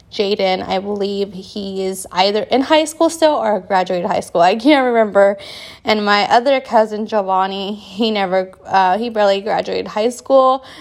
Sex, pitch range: female, 200-250 Hz